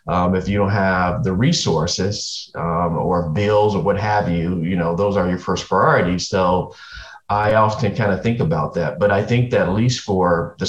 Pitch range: 90-105 Hz